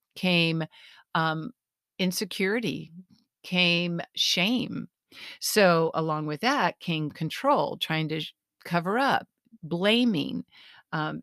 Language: English